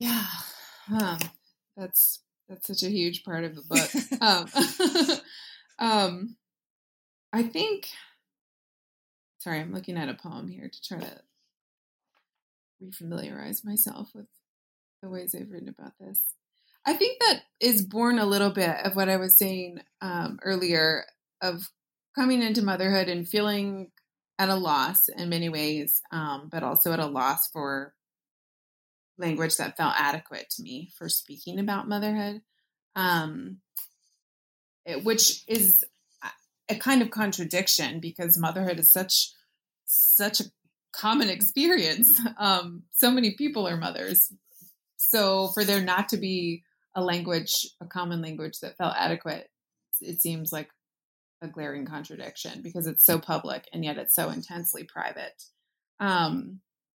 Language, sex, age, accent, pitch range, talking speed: English, female, 20-39, American, 170-220 Hz, 140 wpm